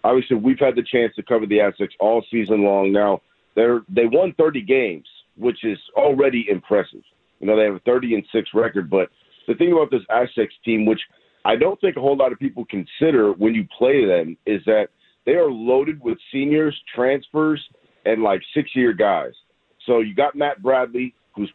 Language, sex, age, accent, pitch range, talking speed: English, male, 40-59, American, 110-145 Hz, 195 wpm